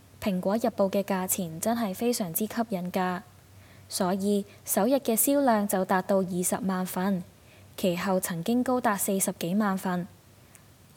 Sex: female